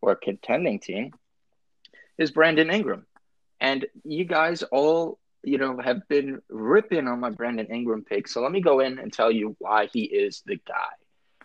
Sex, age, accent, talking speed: male, 30-49, American, 175 wpm